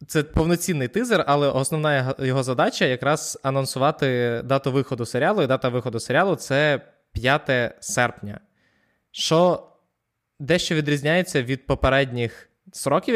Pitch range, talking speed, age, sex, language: 125-155 Hz, 120 wpm, 20-39, male, Ukrainian